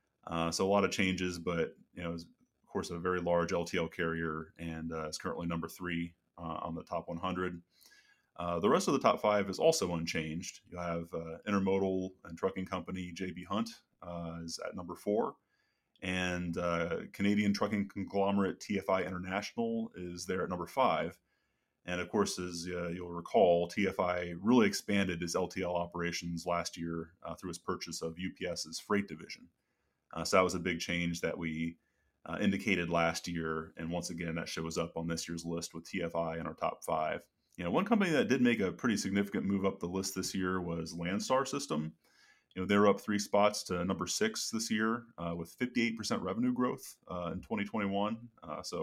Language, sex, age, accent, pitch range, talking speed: English, male, 30-49, American, 85-100 Hz, 190 wpm